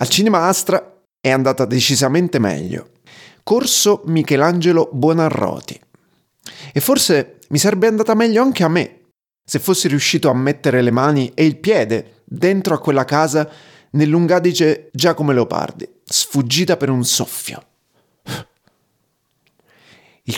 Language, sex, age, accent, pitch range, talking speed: Italian, male, 30-49, native, 130-185 Hz, 120 wpm